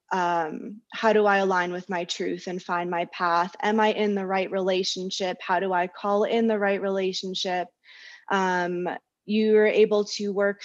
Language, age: English, 20-39